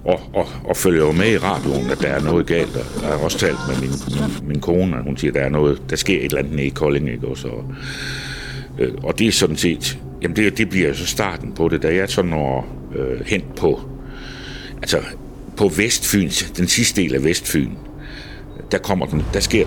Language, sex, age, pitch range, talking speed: Danish, male, 60-79, 65-90 Hz, 215 wpm